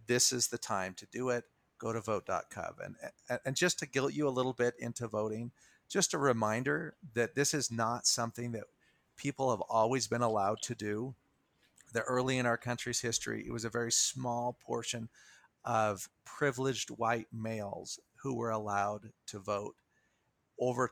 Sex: male